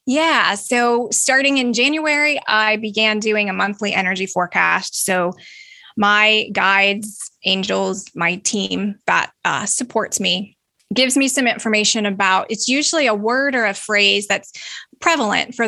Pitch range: 200-235 Hz